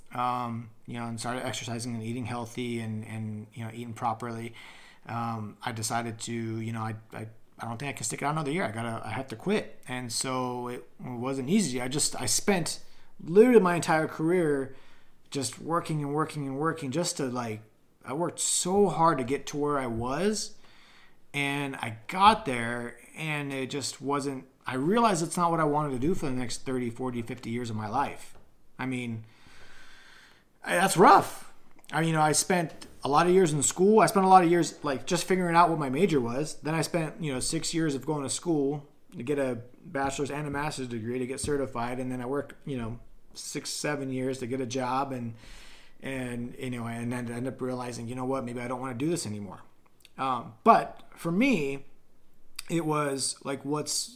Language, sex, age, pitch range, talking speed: English, male, 30-49, 120-150 Hz, 210 wpm